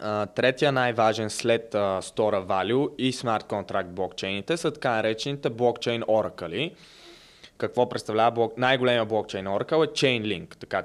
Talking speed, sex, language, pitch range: 140 wpm, male, Bulgarian, 115-145 Hz